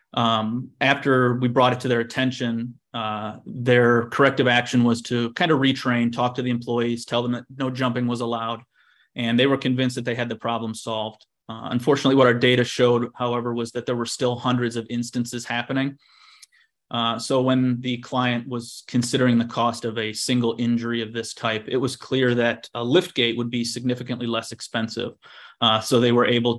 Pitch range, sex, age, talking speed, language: 120-135 Hz, male, 30-49, 195 wpm, English